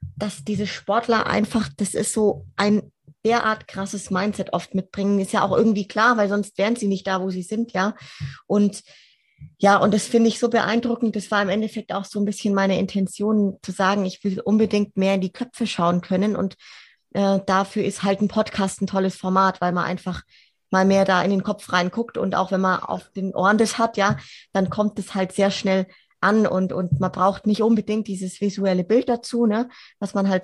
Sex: female